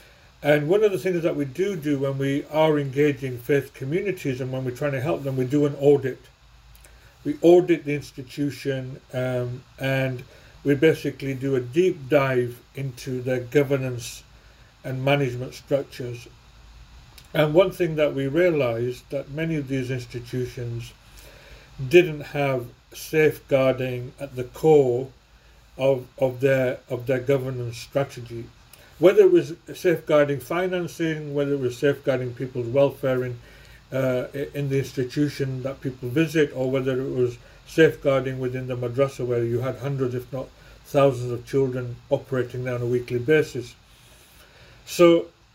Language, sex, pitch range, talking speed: English, male, 125-150 Hz, 145 wpm